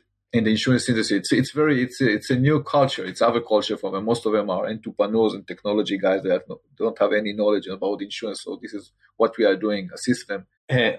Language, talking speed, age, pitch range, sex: English, 240 wpm, 40-59, 105-120 Hz, male